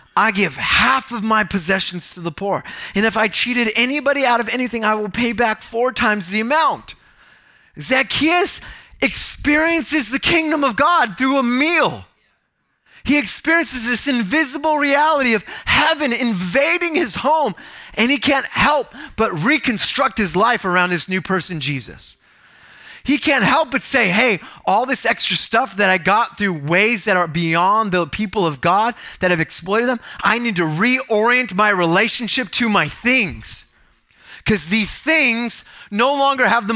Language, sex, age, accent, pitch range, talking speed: English, male, 30-49, American, 210-275 Hz, 160 wpm